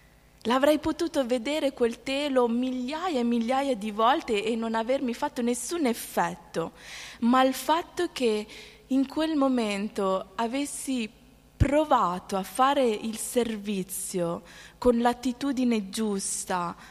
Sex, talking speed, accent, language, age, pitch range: female, 115 wpm, native, Italian, 20-39, 200-250 Hz